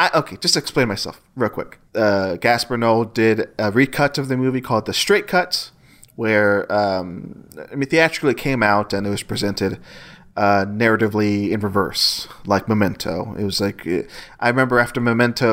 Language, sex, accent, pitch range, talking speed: English, male, American, 105-140 Hz, 180 wpm